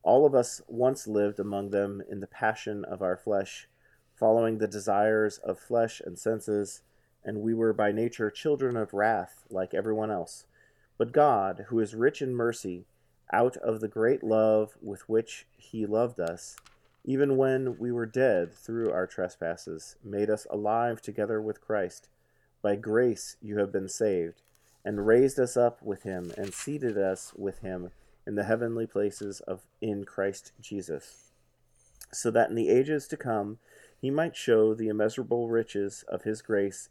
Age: 40-59